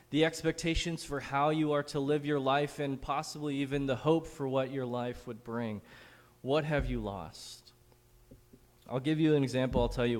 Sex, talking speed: male, 195 wpm